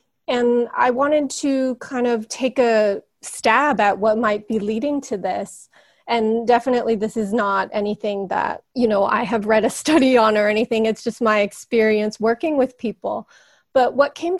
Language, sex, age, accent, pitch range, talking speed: English, female, 30-49, American, 210-255 Hz, 180 wpm